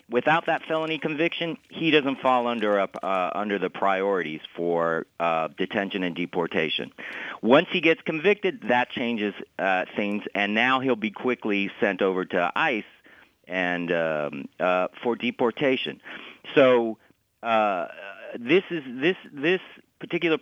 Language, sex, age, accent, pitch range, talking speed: English, male, 50-69, American, 105-160 Hz, 140 wpm